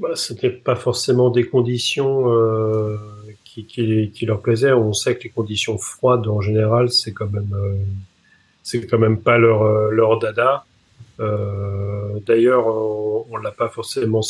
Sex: male